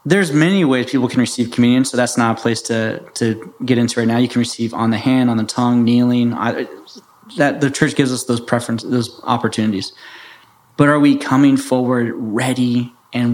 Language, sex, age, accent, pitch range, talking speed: English, male, 20-39, American, 115-130 Hz, 200 wpm